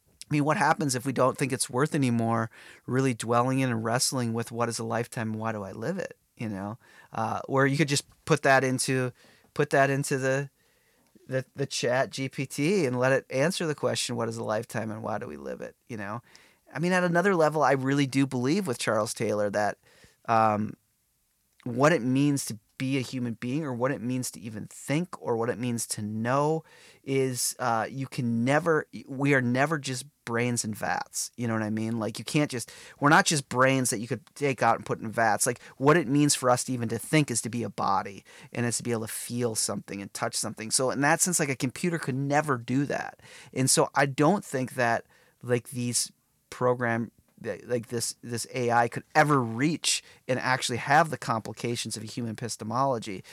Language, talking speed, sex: English, 215 wpm, male